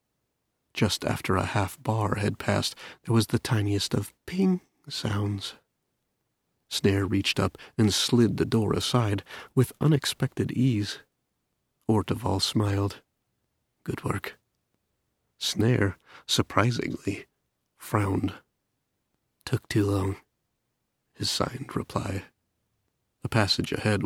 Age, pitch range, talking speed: 40-59, 100-115 Hz, 100 wpm